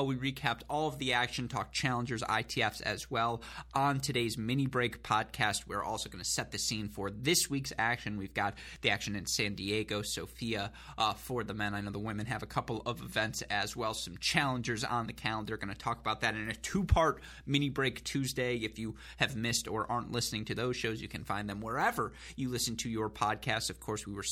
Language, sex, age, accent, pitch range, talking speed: English, male, 20-39, American, 105-125 Hz, 220 wpm